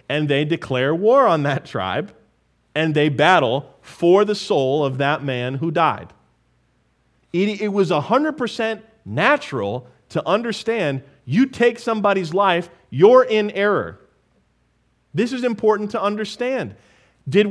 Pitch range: 145-230 Hz